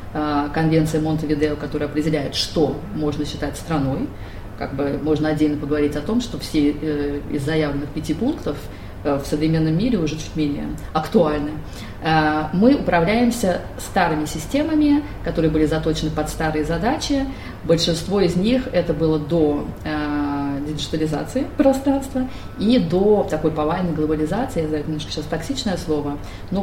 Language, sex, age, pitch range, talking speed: Russian, female, 30-49, 150-175 Hz, 130 wpm